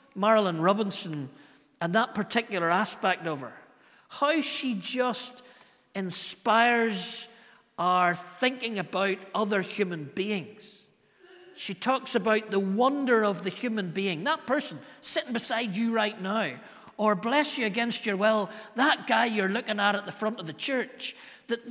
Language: English